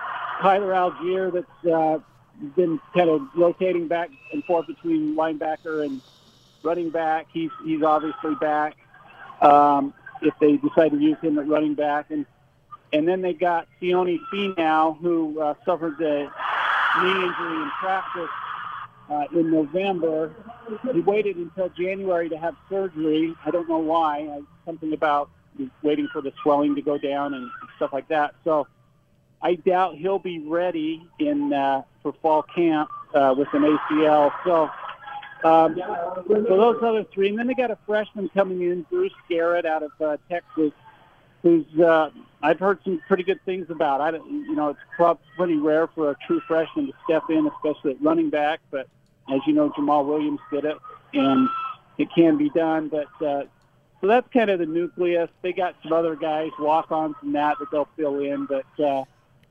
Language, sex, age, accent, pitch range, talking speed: English, male, 50-69, American, 150-180 Hz, 175 wpm